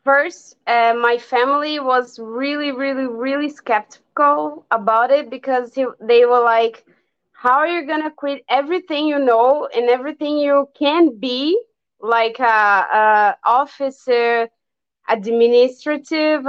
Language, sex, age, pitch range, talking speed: English, female, 20-39, 220-275 Hz, 120 wpm